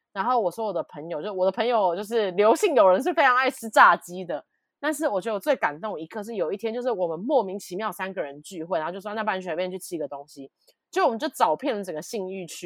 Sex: female